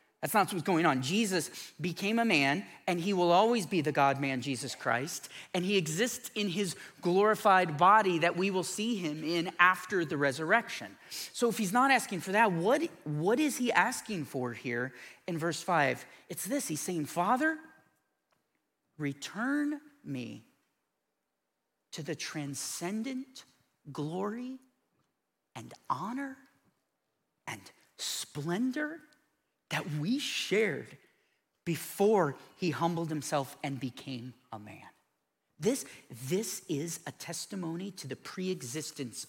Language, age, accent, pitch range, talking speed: English, 40-59, American, 140-200 Hz, 130 wpm